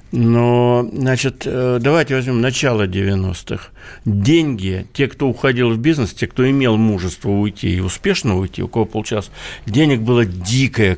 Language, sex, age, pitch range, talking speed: Russian, male, 60-79, 110-145 Hz, 140 wpm